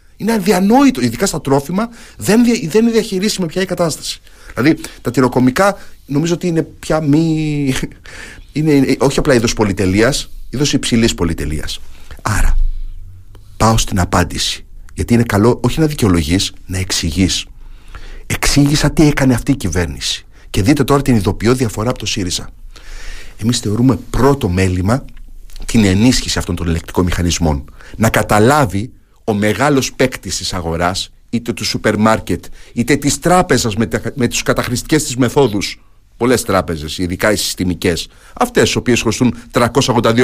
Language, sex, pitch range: Greek, male, 90-130 Hz